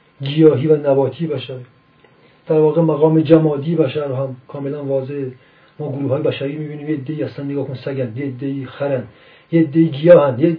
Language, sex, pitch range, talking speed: Persian, male, 135-160 Hz, 165 wpm